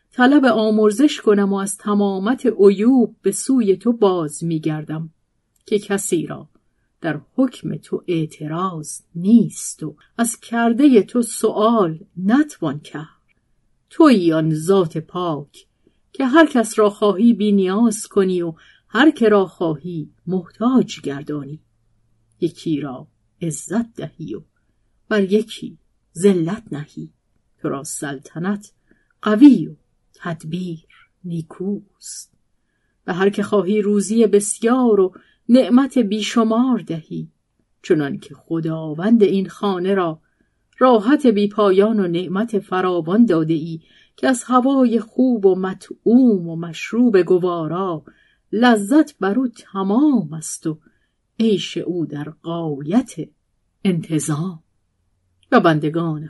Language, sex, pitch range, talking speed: Persian, female, 165-225 Hz, 115 wpm